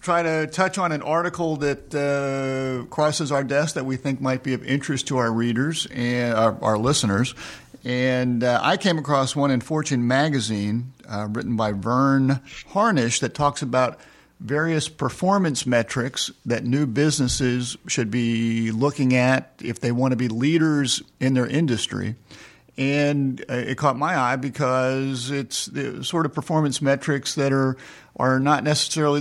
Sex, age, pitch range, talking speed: male, 50-69, 120-145 Hz, 160 wpm